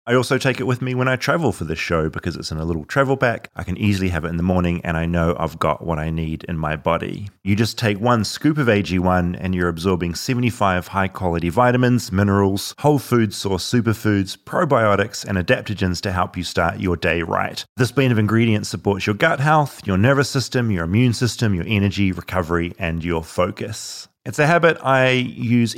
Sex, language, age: male, English, 30-49